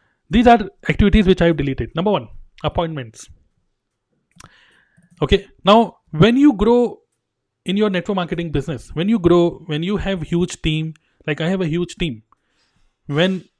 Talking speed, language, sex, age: 155 wpm, Hindi, male, 30-49